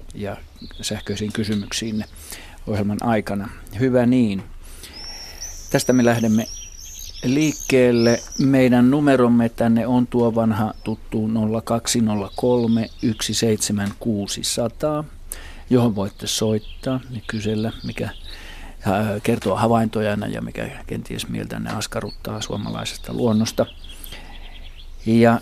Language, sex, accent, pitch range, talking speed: Finnish, male, native, 90-120 Hz, 90 wpm